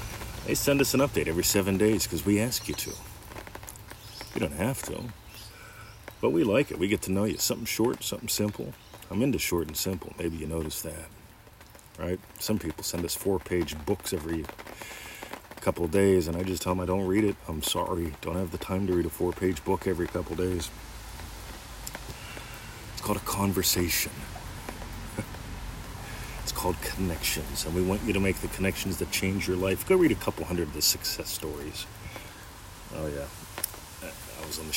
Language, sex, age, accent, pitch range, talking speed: English, male, 40-59, American, 85-105 Hz, 185 wpm